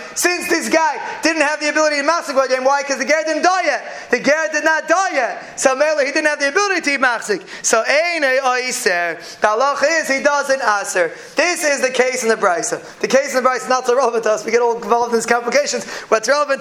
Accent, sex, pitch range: American, male, 240-295 Hz